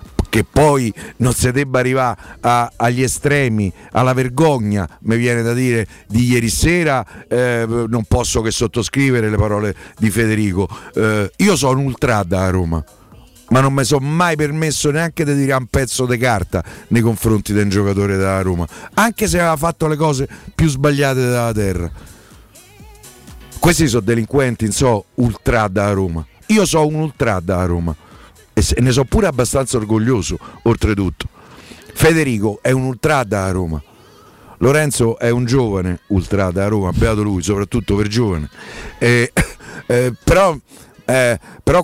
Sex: male